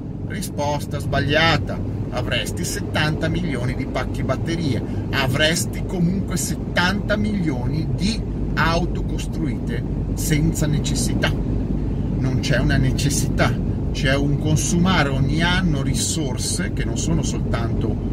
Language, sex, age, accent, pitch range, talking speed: Italian, male, 40-59, native, 105-125 Hz, 105 wpm